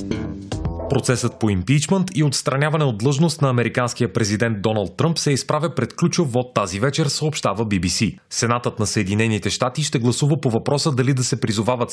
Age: 30-49